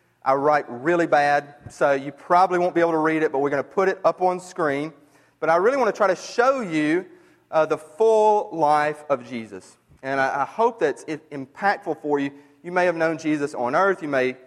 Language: English